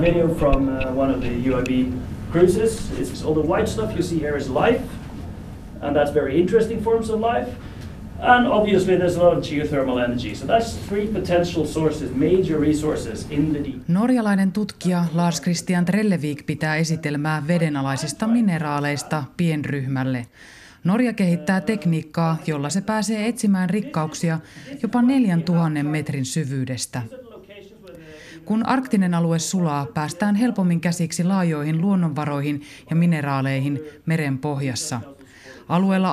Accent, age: native, 30-49